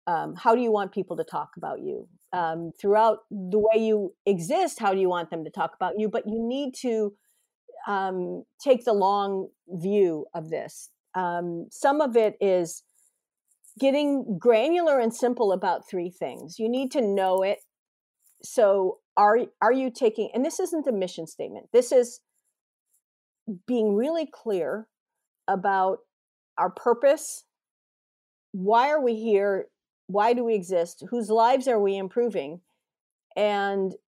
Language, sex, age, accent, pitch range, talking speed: English, female, 50-69, American, 190-245 Hz, 150 wpm